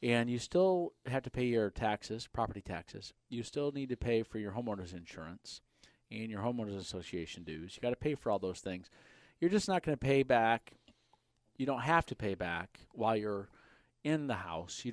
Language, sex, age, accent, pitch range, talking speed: English, male, 40-59, American, 95-125 Hz, 205 wpm